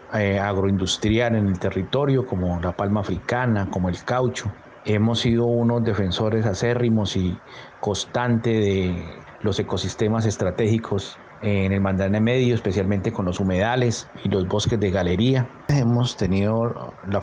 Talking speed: 135 wpm